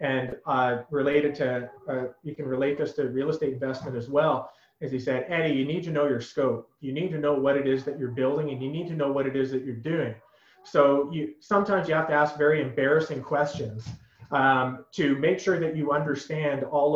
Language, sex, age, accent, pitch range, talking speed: English, male, 30-49, American, 130-150 Hz, 225 wpm